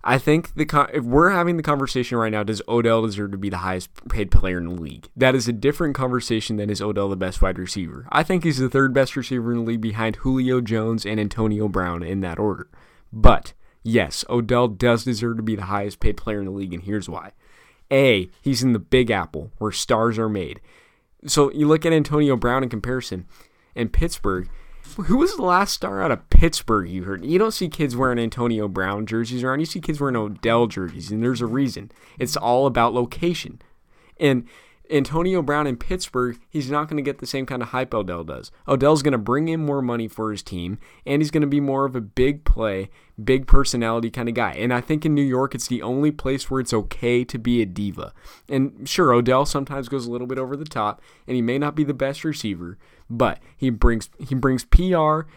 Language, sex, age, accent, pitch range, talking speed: English, male, 20-39, American, 105-140 Hz, 225 wpm